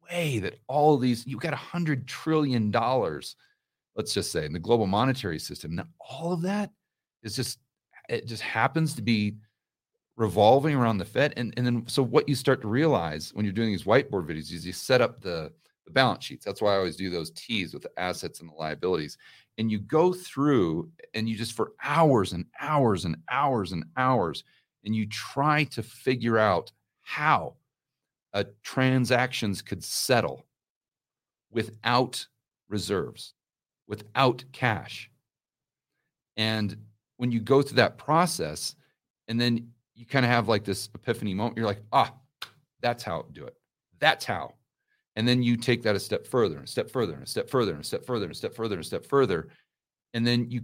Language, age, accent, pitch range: English, 40-59, American, 105-135 Hz